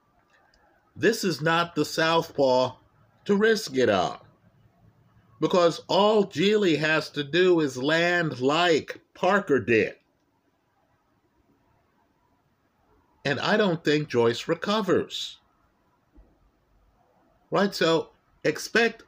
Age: 50-69